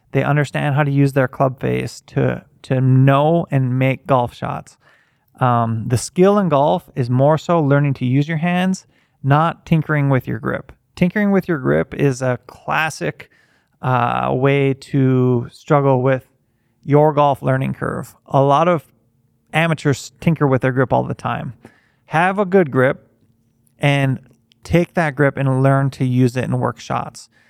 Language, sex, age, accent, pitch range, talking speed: English, male, 30-49, American, 125-150 Hz, 165 wpm